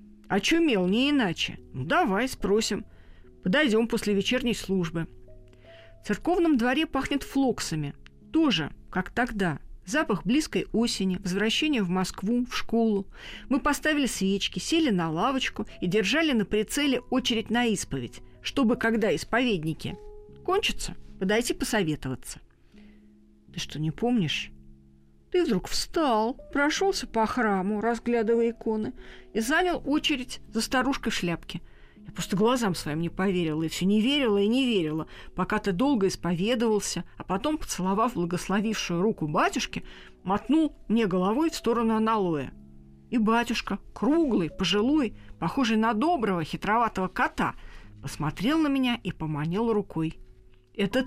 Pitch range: 170-245 Hz